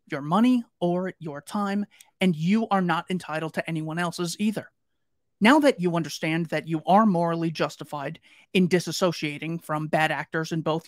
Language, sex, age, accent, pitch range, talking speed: English, male, 30-49, American, 155-195 Hz, 165 wpm